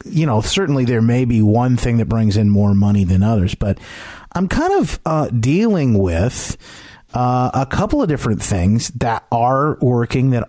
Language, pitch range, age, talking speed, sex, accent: English, 105-140 Hz, 30-49, 185 wpm, male, American